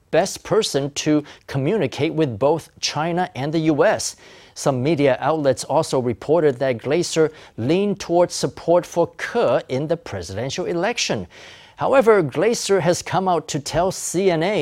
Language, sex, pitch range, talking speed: English, male, 130-175 Hz, 140 wpm